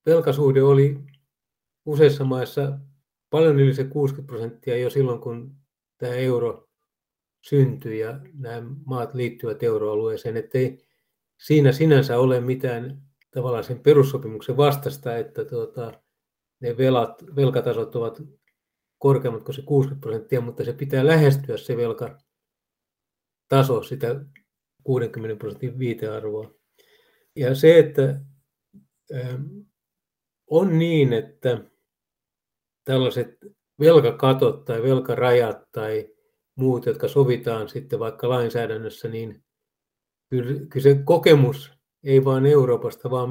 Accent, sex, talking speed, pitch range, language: native, male, 105 wpm, 125-145 Hz, Finnish